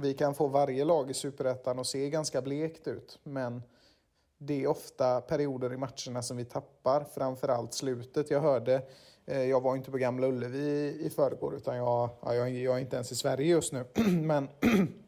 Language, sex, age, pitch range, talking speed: Swedish, male, 30-49, 125-145 Hz, 190 wpm